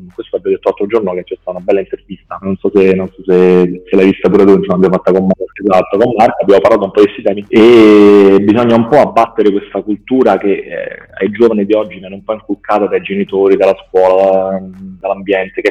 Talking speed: 235 wpm